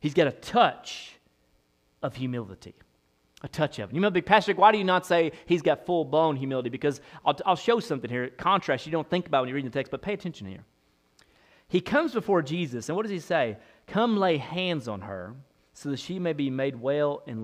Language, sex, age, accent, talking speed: English, male, 30-49, American, 225 wpm